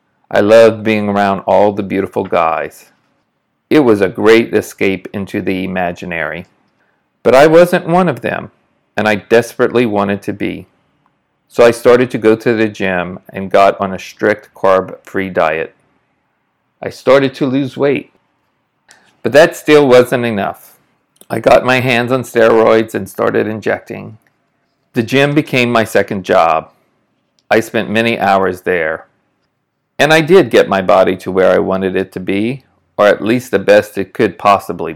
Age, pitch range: 40-59, 100-120 Hz